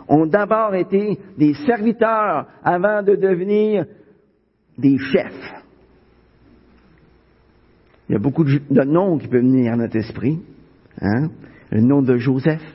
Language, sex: French, male